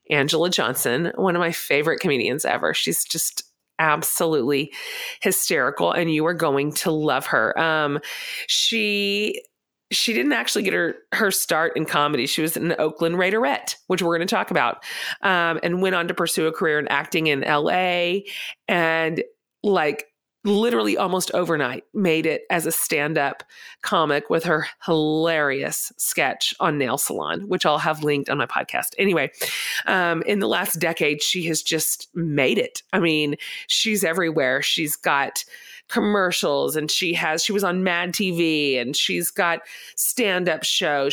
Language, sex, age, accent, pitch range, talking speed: English, female, 30-49, American, 155-185 Hz, 165 wpm